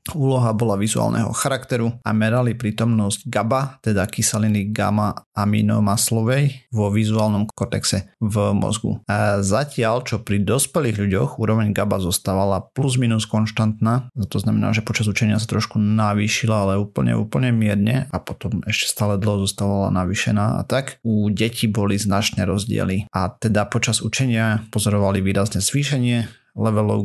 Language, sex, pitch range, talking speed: Slovak, male, 100-115 Hz, 140 wpm